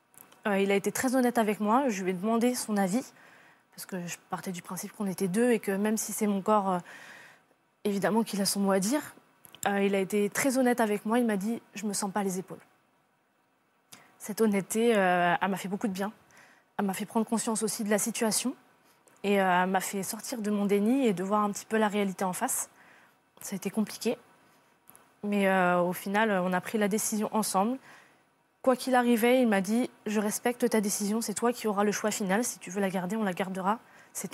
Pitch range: 195-230 Hz